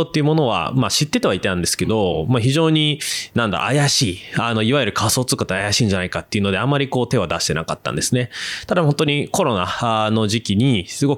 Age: 20-39